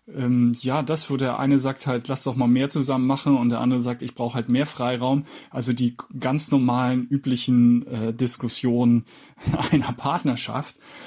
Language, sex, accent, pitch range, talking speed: German, male, German, 125-165 Hz, 175 wpm